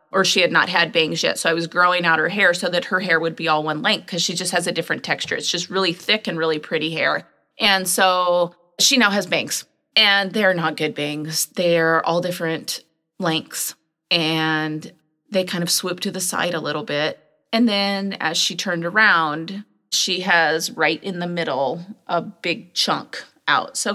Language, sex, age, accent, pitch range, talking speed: English, female, 30-49, American, 170-215 Hz, 205 wpm